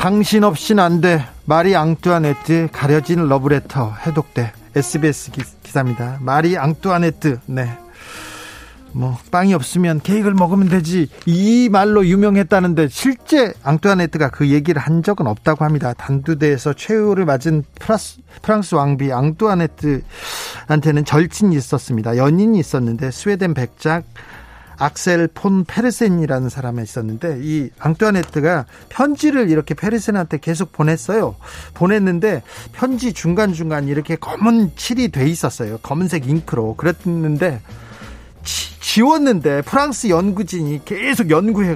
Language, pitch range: Korean, 140-200 Hz